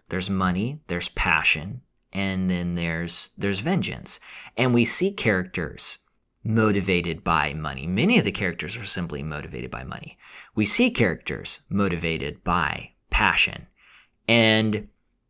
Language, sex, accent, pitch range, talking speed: English, male, American, 90-130 Hz, 125 wpm